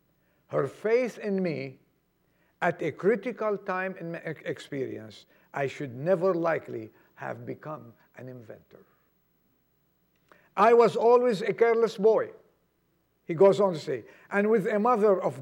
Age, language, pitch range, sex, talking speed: 50-69, English, 170-205 Hz, male, 135 wpm